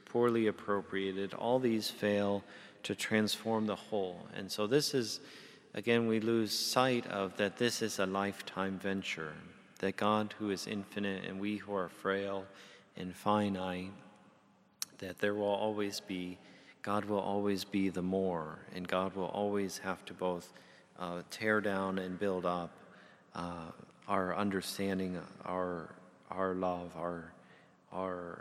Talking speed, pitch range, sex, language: 145 wpm, 90-105 Hz, male, English